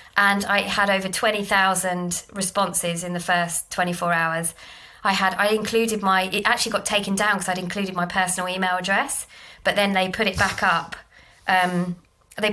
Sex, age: female, 20-39